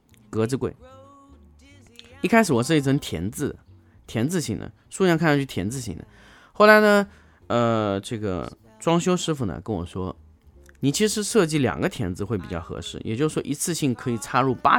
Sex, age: male, 20-39